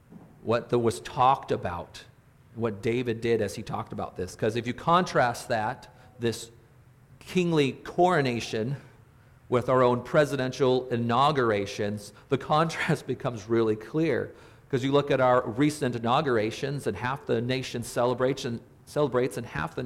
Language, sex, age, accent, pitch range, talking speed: English, male, 40-59, American, 120-140 Hz, 140 wpm